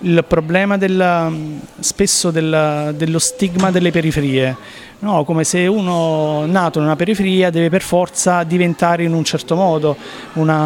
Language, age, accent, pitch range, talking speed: Italian, 30-49, native, 155-185 Hz, 145 wpm